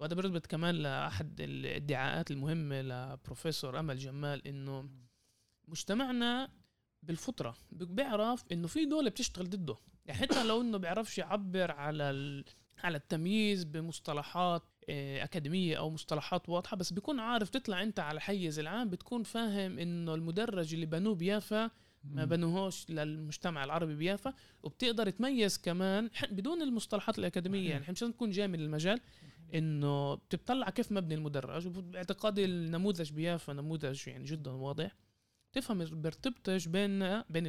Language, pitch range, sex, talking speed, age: Arabic, 145-200 Hz, male, 125 wpm, 20-39